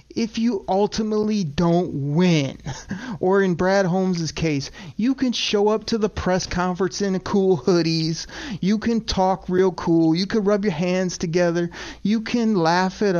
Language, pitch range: English, 160-215 Hz